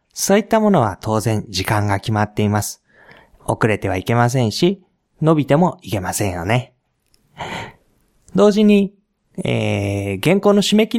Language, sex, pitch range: Japanese, male, 105-175 Hz